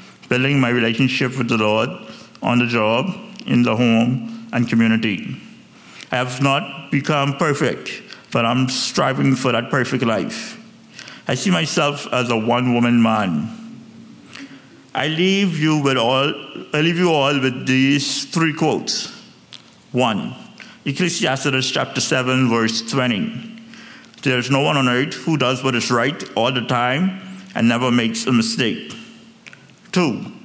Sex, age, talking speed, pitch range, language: male, 60-79, 130 wpm, 125-175 Hz, English